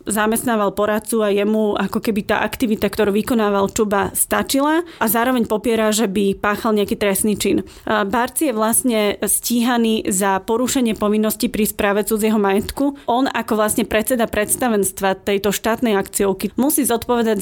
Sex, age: female, 30-49